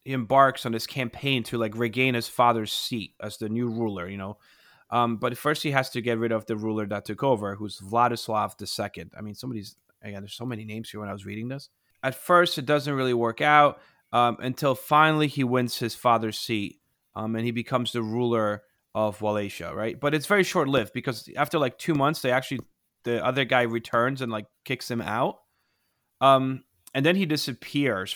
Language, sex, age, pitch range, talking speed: English, male, 30-49, 110-135 Hz, 210 wpm